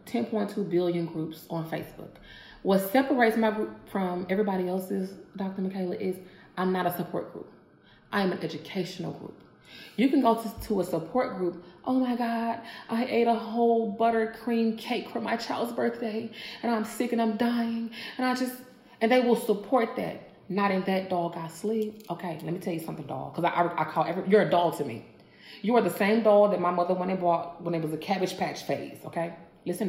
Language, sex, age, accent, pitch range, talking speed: English, female, 30-49, American, 175-230 Hz, 210 wpm